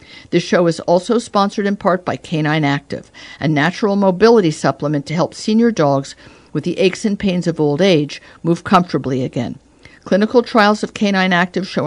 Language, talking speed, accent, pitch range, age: English, 175 wpm, American, 150-185 Hz, 50-69